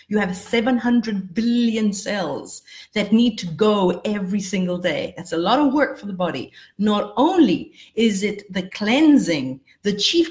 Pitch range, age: 180-230 Hz, 50-69